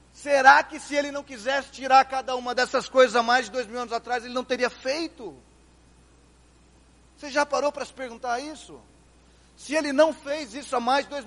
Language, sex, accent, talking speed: Portuguese, male, Brazilian, 200 wpm